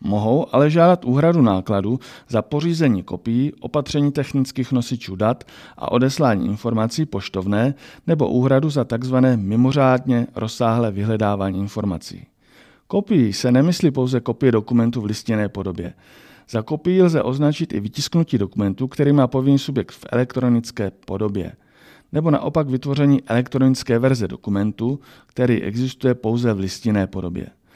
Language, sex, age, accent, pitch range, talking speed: Czech, male, 40-59, native, 105-135 Hz, 130 wpm